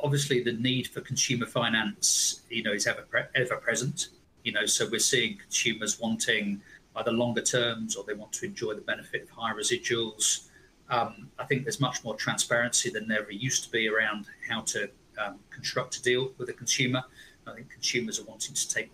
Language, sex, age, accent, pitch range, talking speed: English, male, 40-59, British, 115-135 Hz, 200 wpm